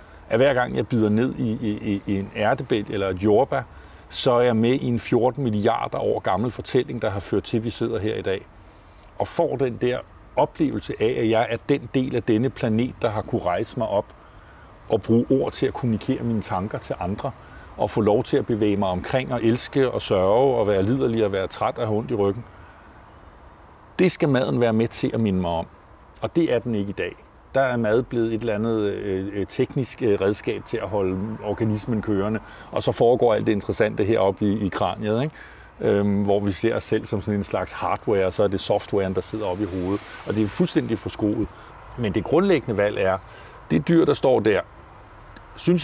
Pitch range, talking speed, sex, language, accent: 100-125 Hz, 220 wpm, male, Danish, native